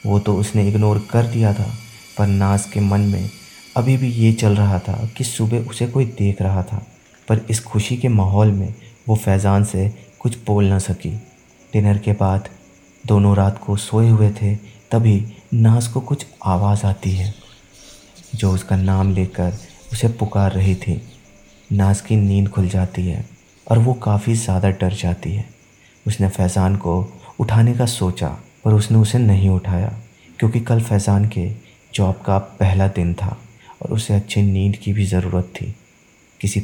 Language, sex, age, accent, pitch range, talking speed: Hindi, male, 30-49, native, 95-115 Hz, 170 wpm